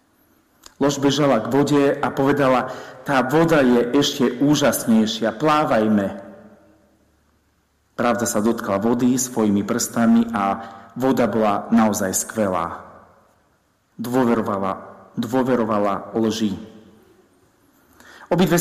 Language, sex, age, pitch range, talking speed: Slovak, male, 40-59, 105-130 Hz, 90 wpm